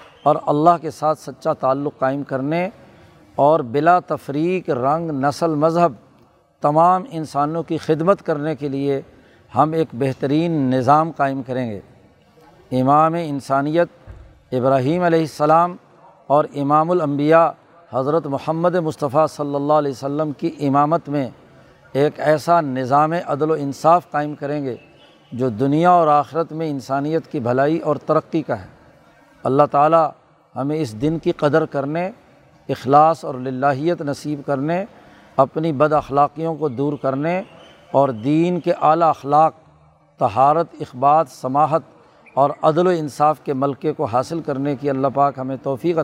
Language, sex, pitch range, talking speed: Urdu, male, 140-160 Hz, 140 wpm